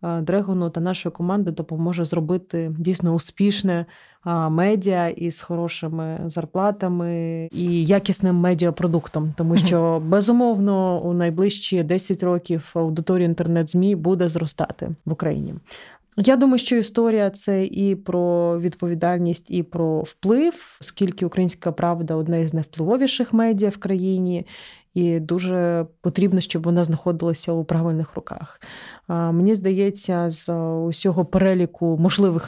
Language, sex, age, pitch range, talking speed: Ukrainian, female, 20-39, 165-190 Hz, 120 wpm